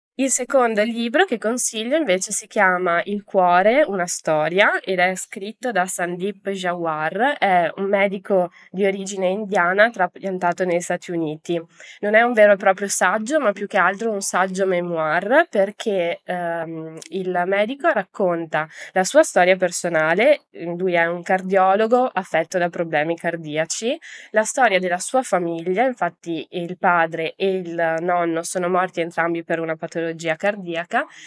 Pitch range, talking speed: 170-210 Hz, 150 wpm